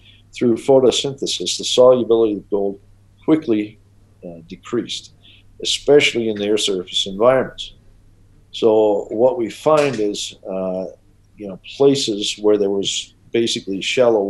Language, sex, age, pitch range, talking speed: English, male, 50-69, 95-110 Hz, 120 wpm